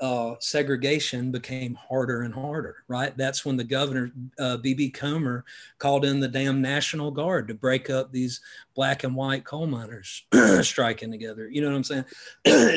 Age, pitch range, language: 40-59, 115-135 Hz, English